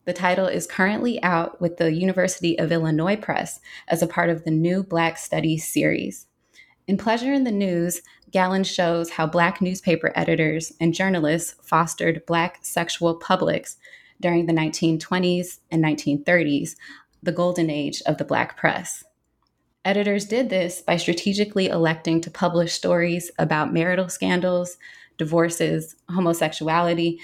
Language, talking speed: English, 140 wpm